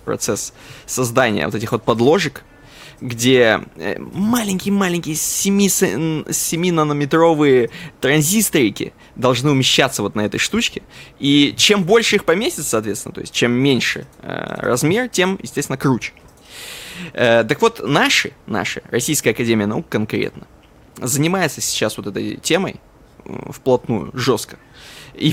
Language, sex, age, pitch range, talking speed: Russian, male, 20-39, 120-165 Hz, 110 wpm